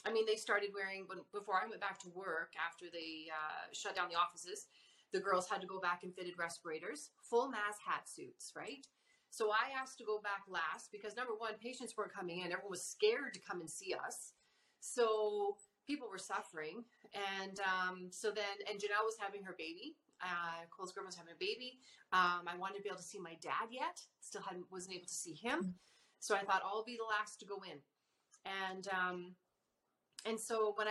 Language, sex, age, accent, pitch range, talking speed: English, female, 30-49, American, 180-225 Hz, 210 wpm